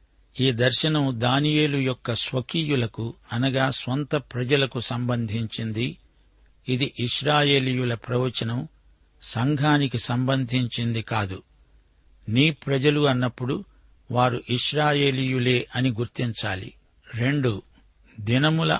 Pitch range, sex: 115-140 Hz, male